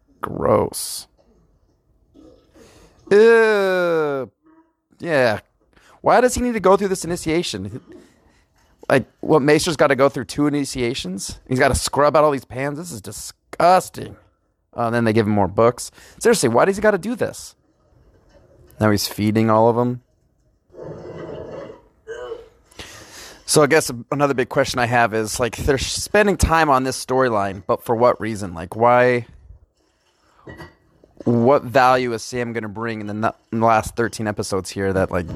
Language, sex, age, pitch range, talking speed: English, male, 30-49, 110-145 Hz, 155 wpm